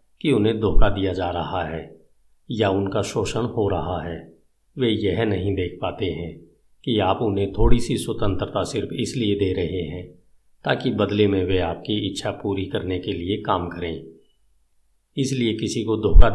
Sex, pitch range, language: male, 95-115 Hz, Hindi